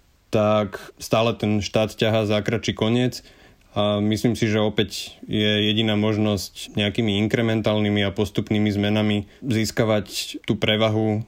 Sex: male